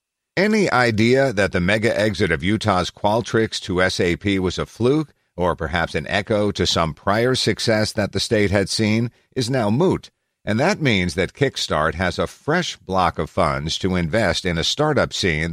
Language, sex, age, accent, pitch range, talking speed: English, male, 50-69, American, 85-115 Hz, 180 wpm